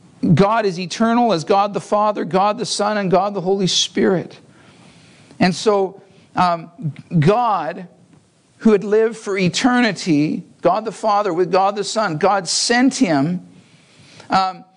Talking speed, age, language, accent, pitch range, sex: 140 wpm, 50-69, English, American, 160-215 Hz, male